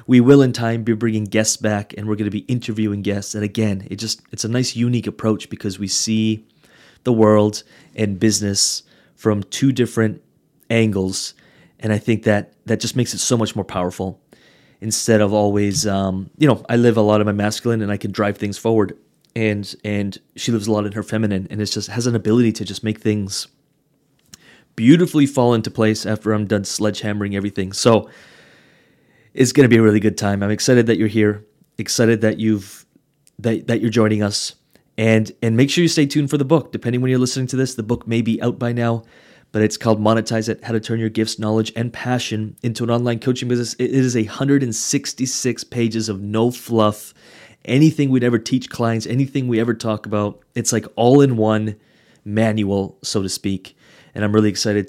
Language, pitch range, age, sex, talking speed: English, 105-120 Hz, 30-49, male, 205 wpm